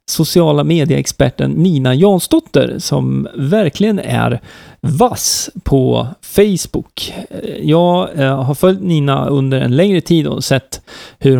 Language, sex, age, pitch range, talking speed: Swedish, male, 40-59, 130-170 Hz, 110 wpm